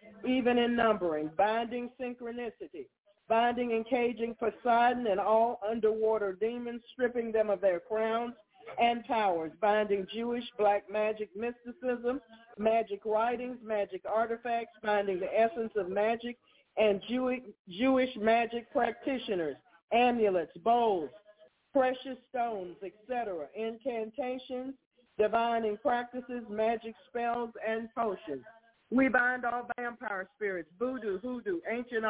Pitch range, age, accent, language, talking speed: 215-245 Hz, 40-59, American, English, 110 wpm